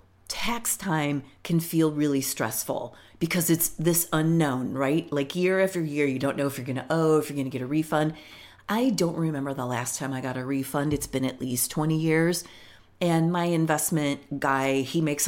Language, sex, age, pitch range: English, female, 40-59, 130-160 Hz